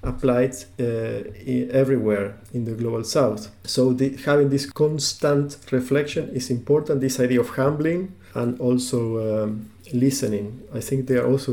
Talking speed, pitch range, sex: 150 wpm, 120-140 Hz, male